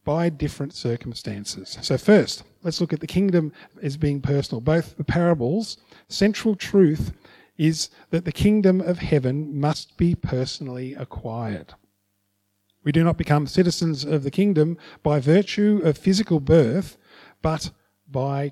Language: English